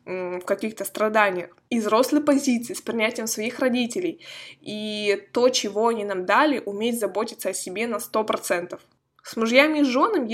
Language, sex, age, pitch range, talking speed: Russian, female, 20-39, 195-255 Hz, 150 wpm